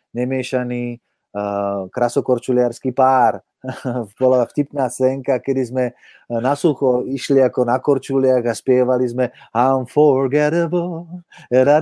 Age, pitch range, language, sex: 30-49, 110-135 Hz, Slovak, male